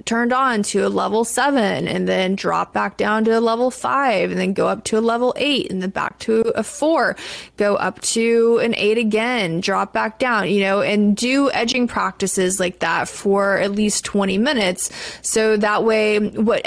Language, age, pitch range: English, 20-39, 190-230 Hz